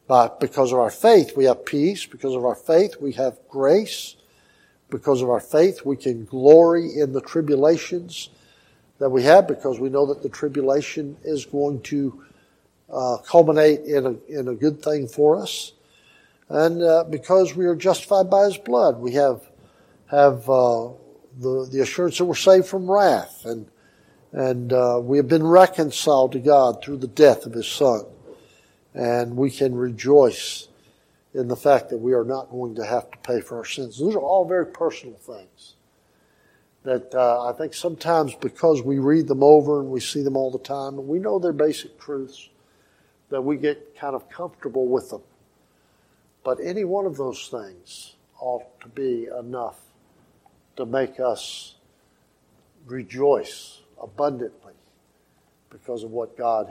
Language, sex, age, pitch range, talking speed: English, male, 60-79, 125-155 Hz, 165 wpm